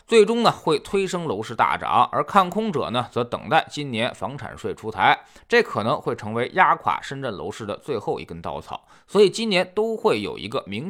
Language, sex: Chinese, male